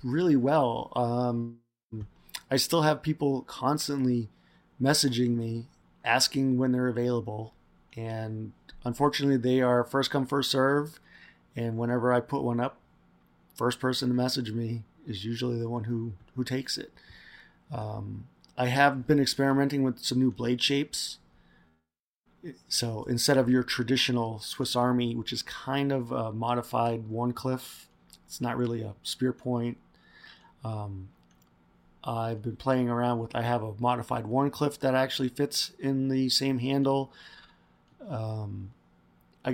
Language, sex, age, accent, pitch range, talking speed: English, male, 30-49, American, 110-135 Hz, 140 wpm